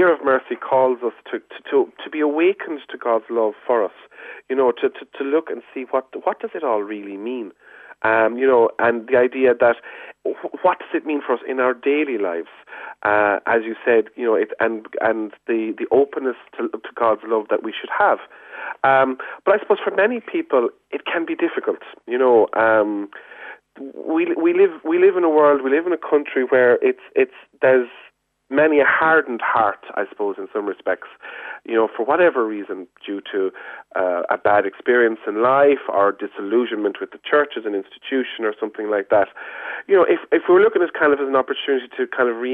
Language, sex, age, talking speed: English, male, 40-59, 210 wpm